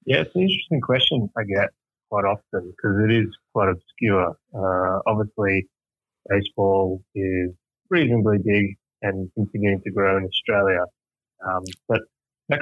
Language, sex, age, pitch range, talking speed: English, male, 20-39, 95-105 Hz, 140 wpm